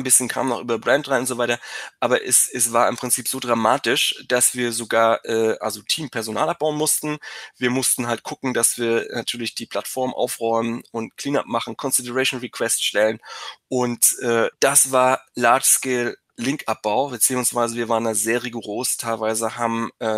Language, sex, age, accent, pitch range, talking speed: German, male, 20-39, German, 110-125 Hz, 170 wpm